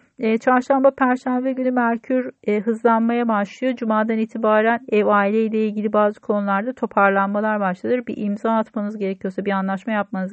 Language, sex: Turkish, female